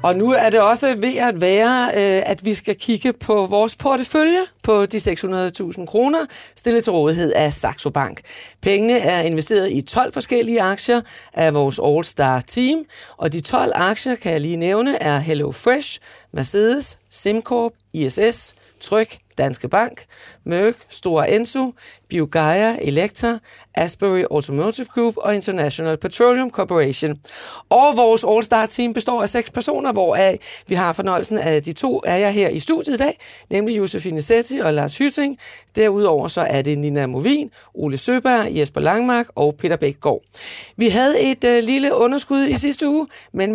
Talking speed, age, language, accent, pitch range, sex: 160 wpm, 30-49, Danish, native, 175-245 Hz, female